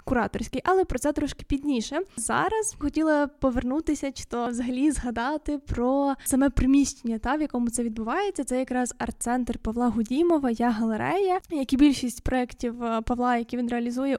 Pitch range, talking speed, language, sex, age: 245-290 Hz, 150 wpm, Ukrainian, female, 10-29